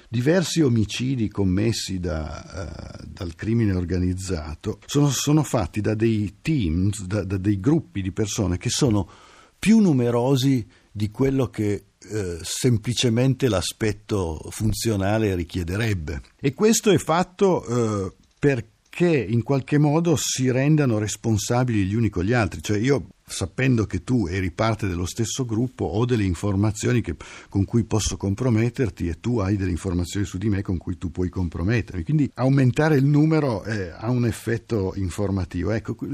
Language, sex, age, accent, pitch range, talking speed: Italian, male, 50-69, native, 95-125 Hz, 150 wpm